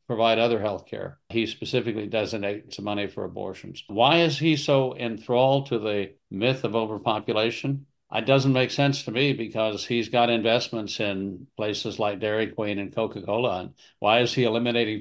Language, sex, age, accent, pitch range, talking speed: English, male, 60-79, American, 110-130 Hz, 170 wpm